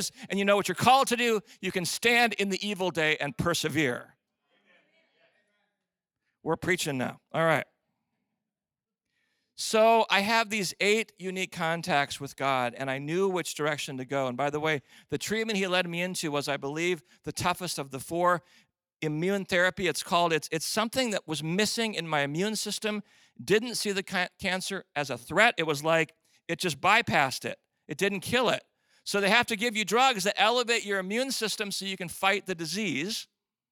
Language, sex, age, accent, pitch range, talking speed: English, male, 40-59, American, 150-205 Hz, 190 wpm